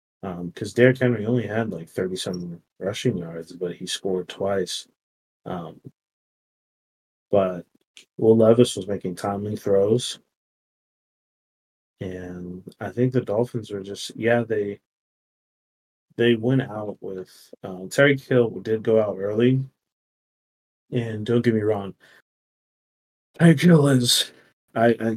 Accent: American